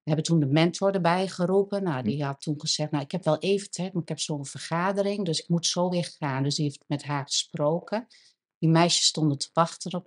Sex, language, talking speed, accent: female, Dutch, 245 wpm, Dutch